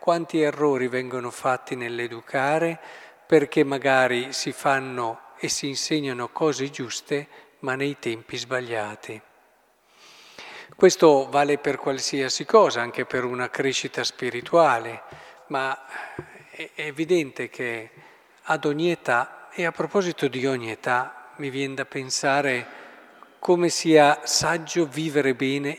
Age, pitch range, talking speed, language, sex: 50-69, 125-155 Hz, 115 wpm, Italian, male